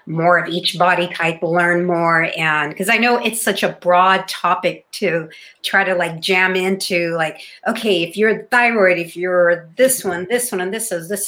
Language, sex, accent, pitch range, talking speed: English, female, American, 165-200 Hz, 195 wpm